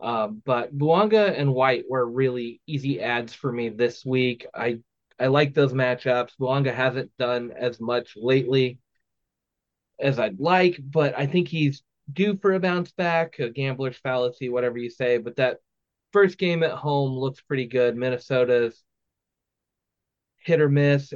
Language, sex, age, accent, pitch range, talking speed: English, male, 20-39, American, 120-140 Hz, 155 wpm